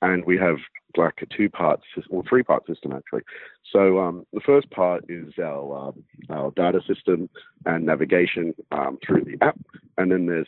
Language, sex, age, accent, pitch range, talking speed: English, male, 40-59, Australian, 85-125 Hz, 195 wpm